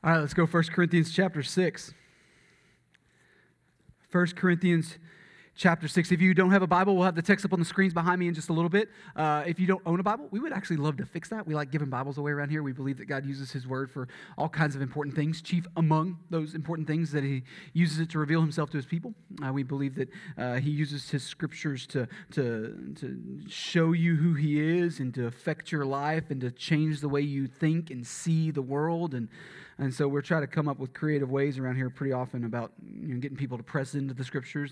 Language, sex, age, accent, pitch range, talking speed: English, male, 30-49, American, 135-170 Hz, 240 wpm